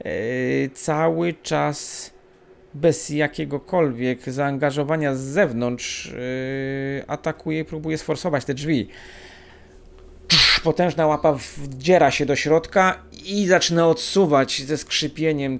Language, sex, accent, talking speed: Polish, male, native, 90 wpm